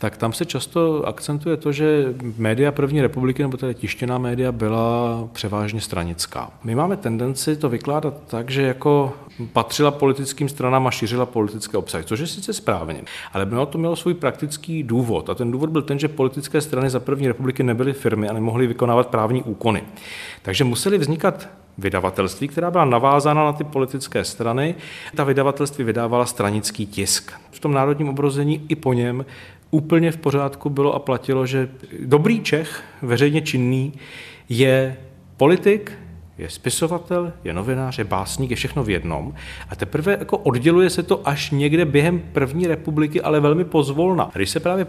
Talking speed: 165 wpm